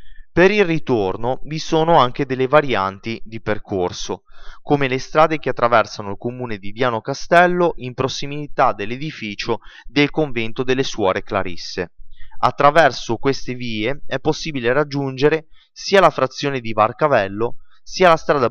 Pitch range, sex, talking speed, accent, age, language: 110-145 Hz, male, 135 wpm, native, 20-39, Italian